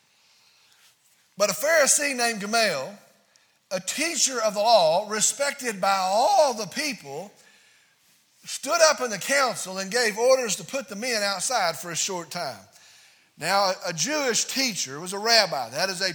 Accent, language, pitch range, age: American, English, 185-240 Hz, 50-69